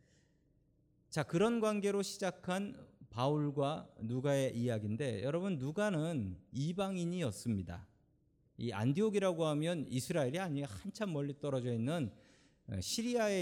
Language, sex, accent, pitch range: Korean, male, native, 115-150 Hz